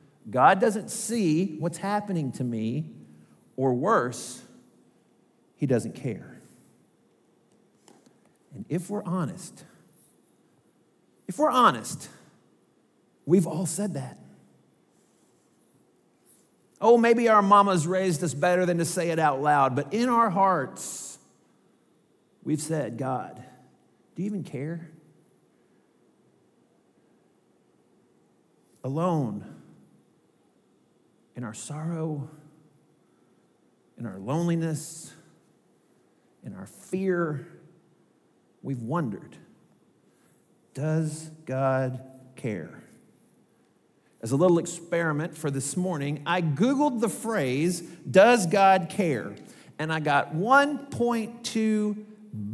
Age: 50-69